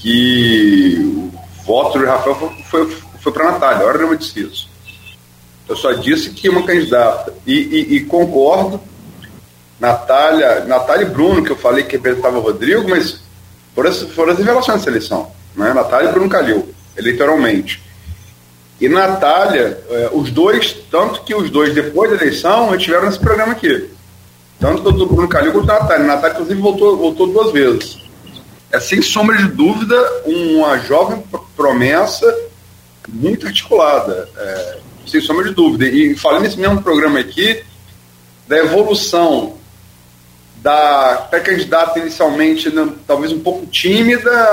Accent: Brazilian